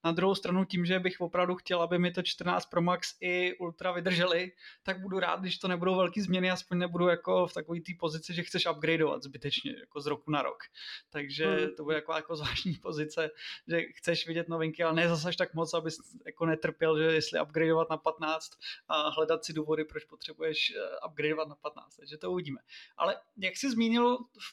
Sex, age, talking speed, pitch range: male, 20-39, 205 wpm, 165-195 Hz